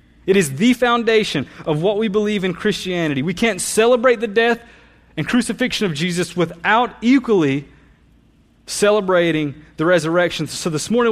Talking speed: 145 wpm